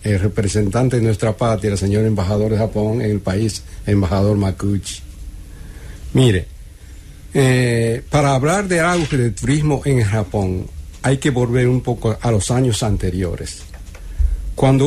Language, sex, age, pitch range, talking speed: English, male, 60-79, 105-140 Hz, 140 wpm